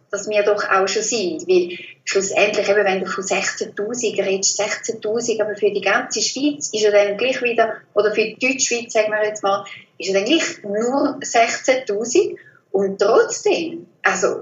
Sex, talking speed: female, 175 wpm